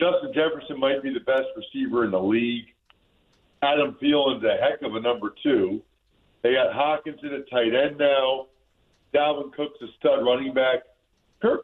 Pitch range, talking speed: 130-185 Hz, 170 wpm